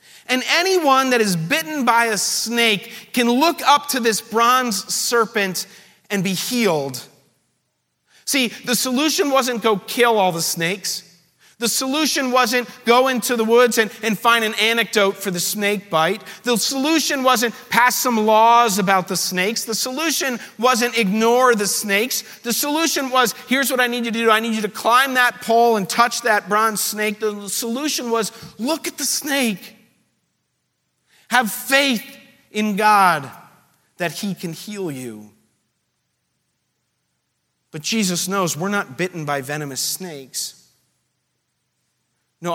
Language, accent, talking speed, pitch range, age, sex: English, American, 150 wpm, 170-245 Hz, 40-59, male